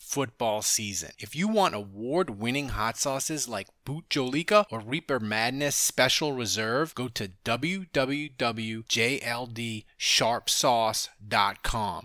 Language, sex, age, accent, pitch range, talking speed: English, male, 30-49, American, 115-165 Hz, 95 wpm